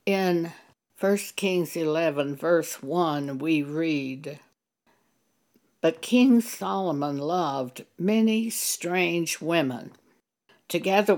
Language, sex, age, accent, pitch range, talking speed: English, female, 60-79, American, 155-200 Hz, 85 wpm